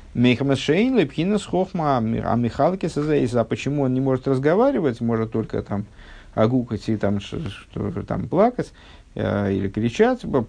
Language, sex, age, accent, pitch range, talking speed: Russian, male, 50-69, native, 100-140 Hz, 125 wpm